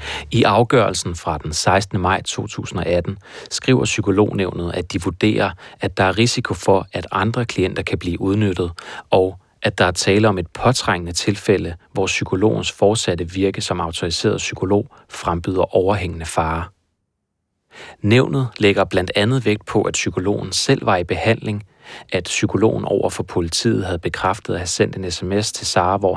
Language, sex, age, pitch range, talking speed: Danish, male, 30-49, 90-110 Hz, 155 wpm